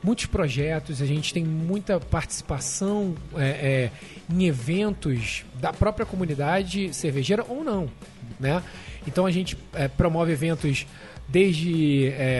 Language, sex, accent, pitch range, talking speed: Portuguese, male, Brazilian, 145-195 Hz, 105 wpm